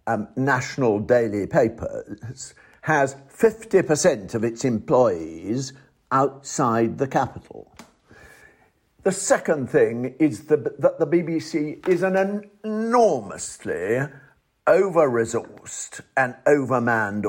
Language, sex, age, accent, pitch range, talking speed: English, male, 50-69, British, 115-165 Hz, 85 wpm